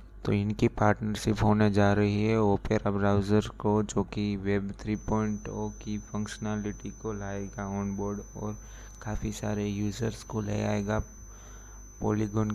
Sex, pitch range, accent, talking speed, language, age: male, 100-110 Hz, native, 130 wpm, Hindi, 20-39